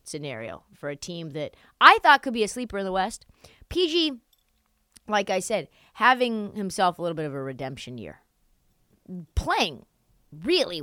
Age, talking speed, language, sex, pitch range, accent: 20-39, 160 wpm, English, female, 185-240 Hz, American